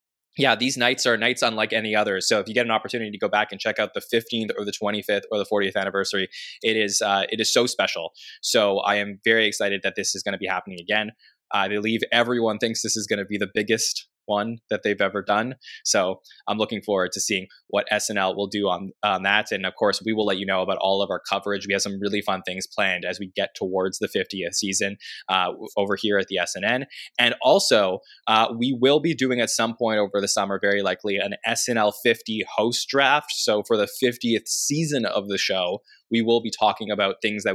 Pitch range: 100-115 Hz